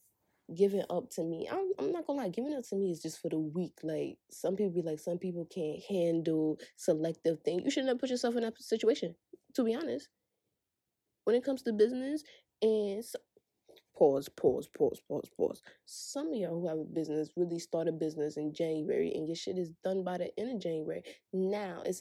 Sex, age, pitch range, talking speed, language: female, 20-39, 160-245 Hz, 210 wpm, English